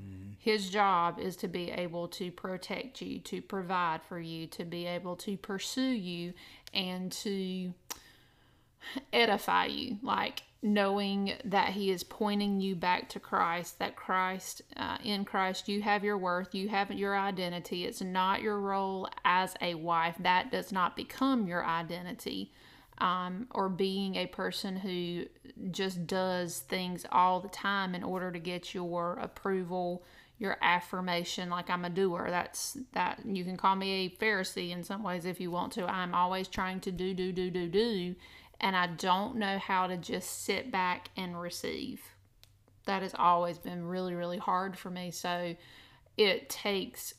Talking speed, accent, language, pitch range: 165 wpm, American, English, 175-200 Hz